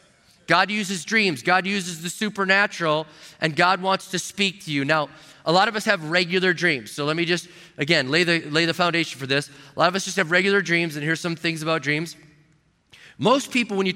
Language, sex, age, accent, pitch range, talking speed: English, male, 30-49, American, 150-190 Hz, 225 wpm